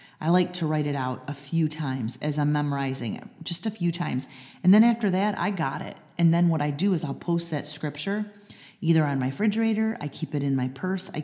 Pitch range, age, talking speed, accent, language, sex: 145-180 Hz, 30-49, 240 wpm, American, English, female